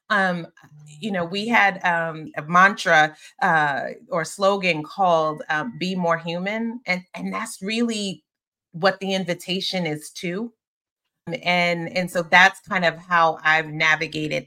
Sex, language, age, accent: female, English, 30-49, American